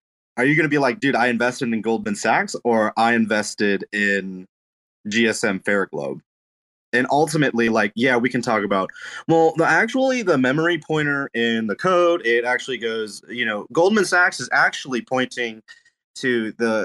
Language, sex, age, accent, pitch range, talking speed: English, male, 20-39, American, 105-130 Hz, 165 wpm